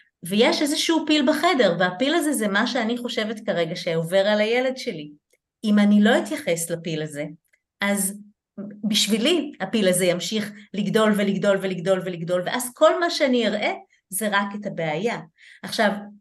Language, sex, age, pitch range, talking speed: Hebrew, female, 30-49, 185-245 Hz, 150 wpm